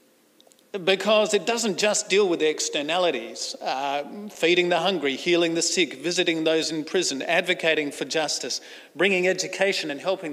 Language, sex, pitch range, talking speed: English, male, 165-250 Hz, 145 wpm